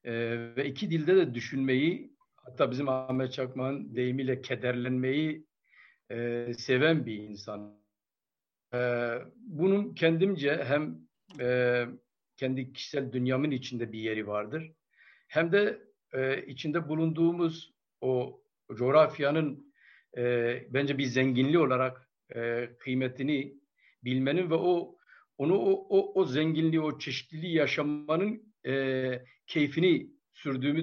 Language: Turkish